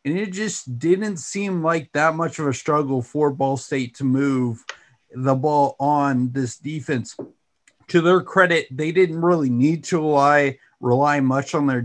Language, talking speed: English, 170 wpm